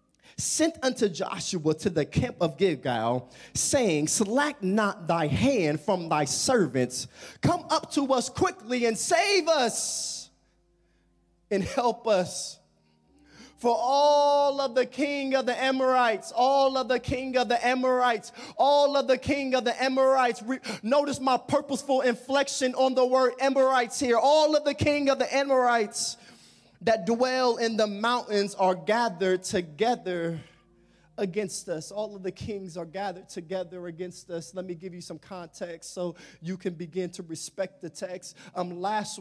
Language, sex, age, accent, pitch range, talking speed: English, male, 20-39, American, 165-235 Hz, 155 wpm